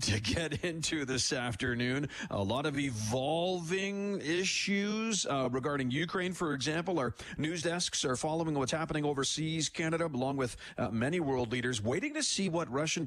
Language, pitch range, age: English, 125-170 Hz, 40-59